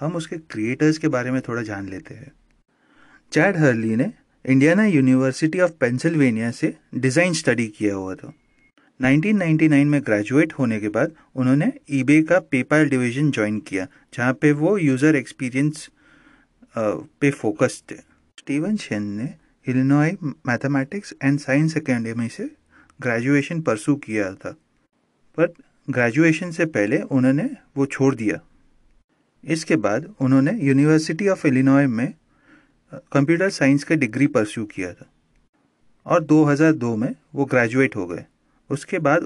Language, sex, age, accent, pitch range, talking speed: Hindi, male, 30-49, native, 125-155 Hz, 135 wpm